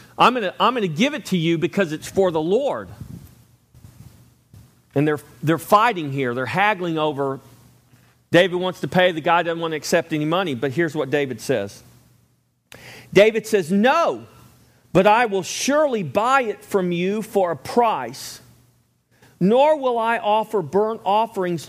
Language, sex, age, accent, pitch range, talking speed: English, male, 40-59, American, 150-220 Hz, 160 wpm